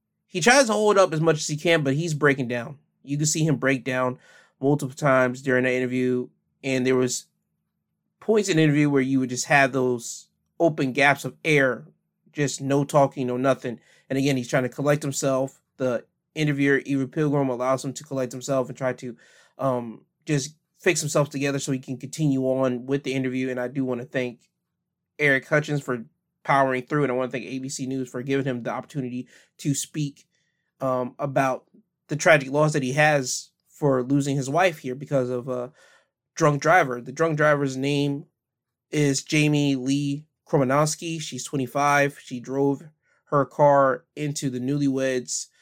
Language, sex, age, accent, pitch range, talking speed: English, male, 20-39, American, 130-150 Hz, 185 wpm